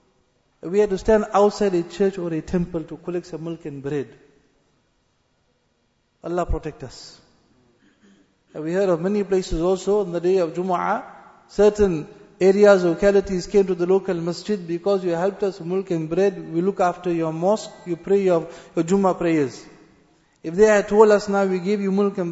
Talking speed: 185 wpm